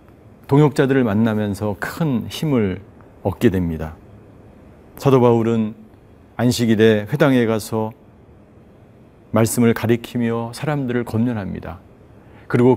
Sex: male